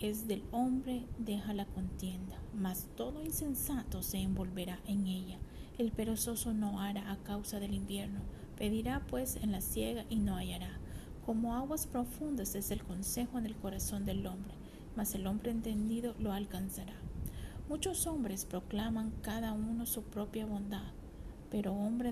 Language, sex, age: English, female, 50-69